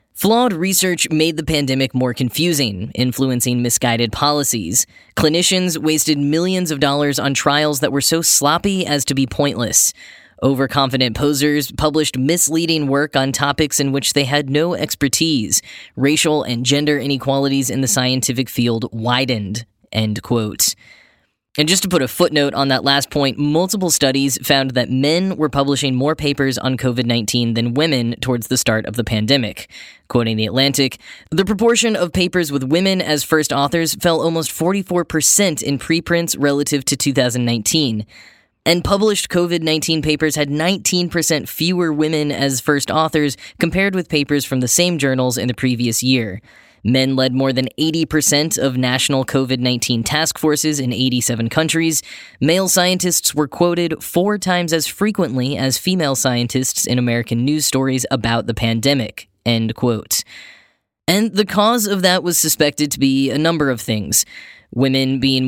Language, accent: English, American